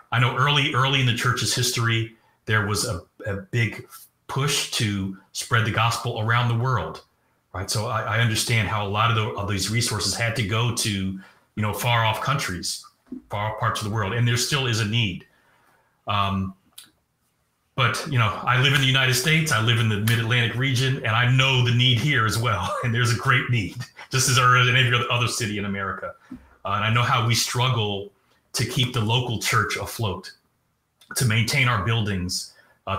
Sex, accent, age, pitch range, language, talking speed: male, American, 30-49, 105-125 Hz, English, 200 wpm